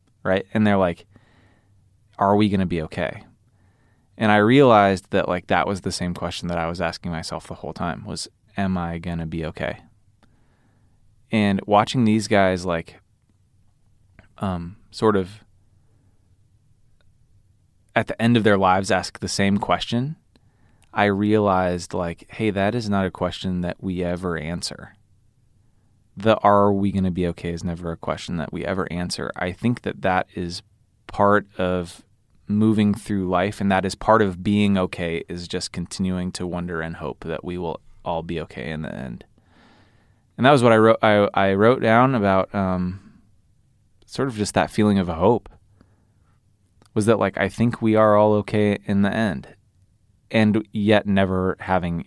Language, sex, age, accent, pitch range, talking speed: English, male, 20-39, American, 90-110 Hz, 170 wpm